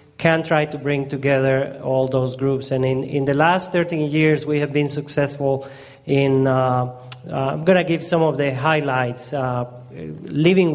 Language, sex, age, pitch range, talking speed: English, male, 30-49, 130-150 Hz, 180 wpm